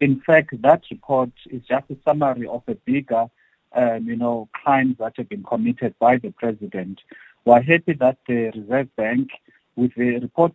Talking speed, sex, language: 175 wpm, male, English